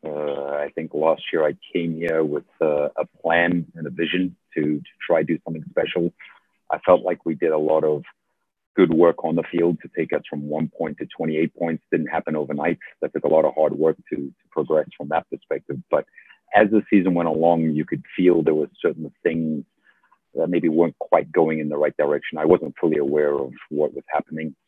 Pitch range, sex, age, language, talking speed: 75-85 Hz, male, 40-59, English, 220 wpm